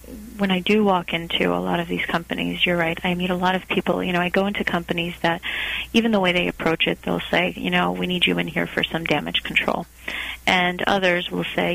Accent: American